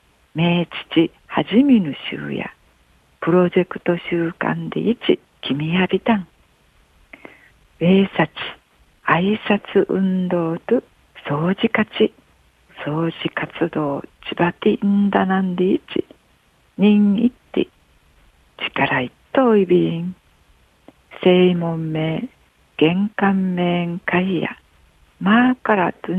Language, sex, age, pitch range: Japanese, female, 60-79, 155-205 Hz